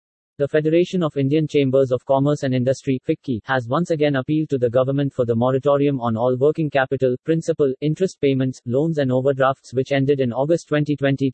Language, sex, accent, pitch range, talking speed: English, male, Indian, 125-150 Hz, 185 wpm